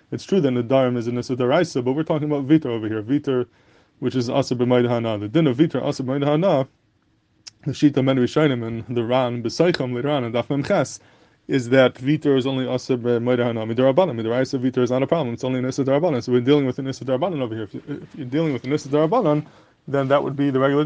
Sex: male